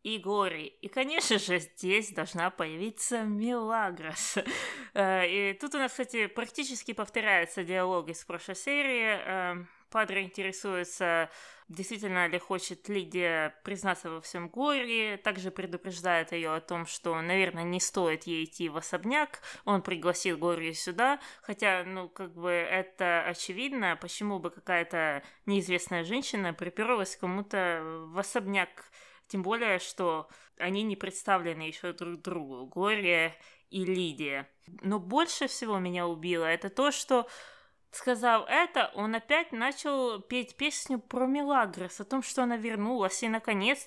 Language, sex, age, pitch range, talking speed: Russian, female, 20-39, 180-240 Hz, 135 wpm